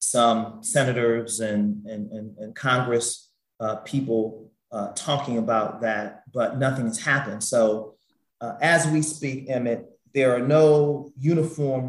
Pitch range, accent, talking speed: 120-140 Hz, American, 135 wpm